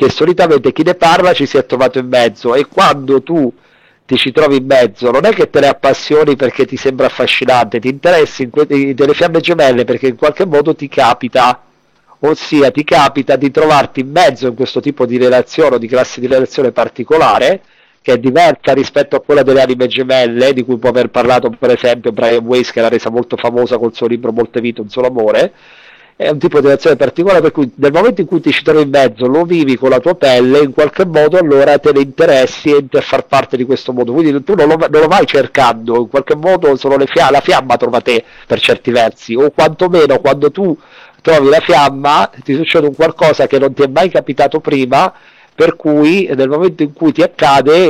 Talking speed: 220 wpm